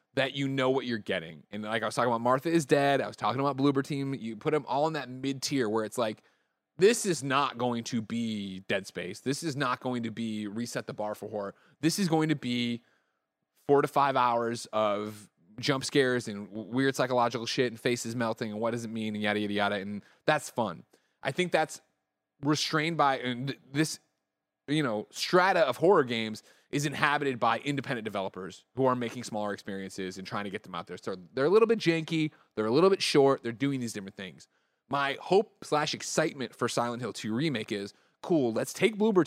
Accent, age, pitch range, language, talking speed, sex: American, 20-39, 115-150 Hz, English, 215 wpm, male